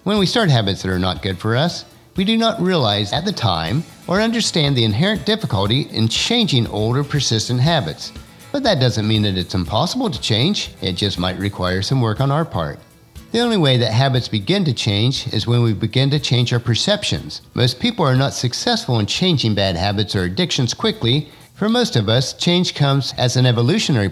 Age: 50-69